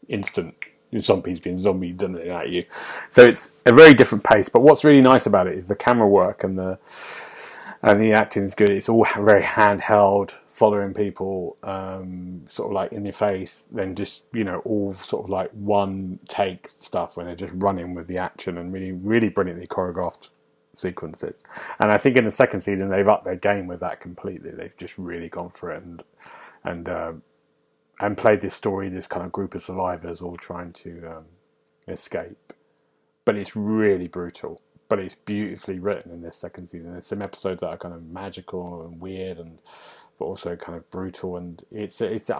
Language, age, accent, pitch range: English, 30-49, British, 90-105 Hz